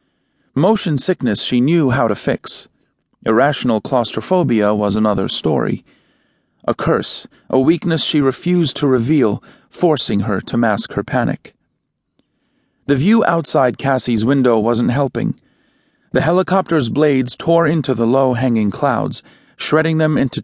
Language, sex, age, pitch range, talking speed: English, male, 40-59, 115-155 Hz, 130 wpm